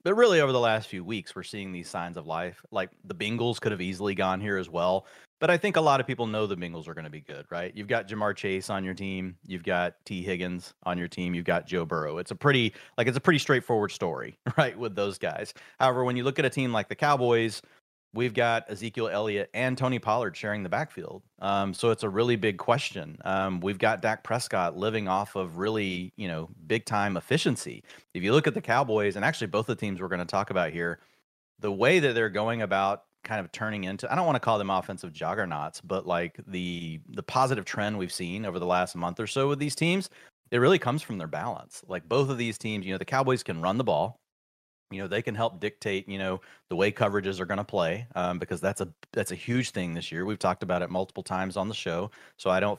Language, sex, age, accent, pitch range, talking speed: English, male, 30-49, American, 90-120 Hz, 250 wpm